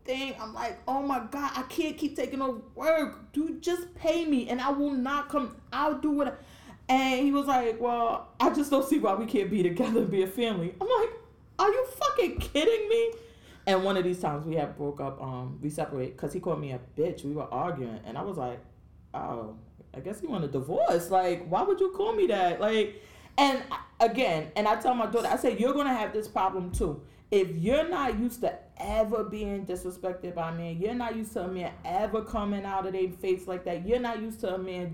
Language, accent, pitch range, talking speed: English, American, 175-255 Hz, 230 wpm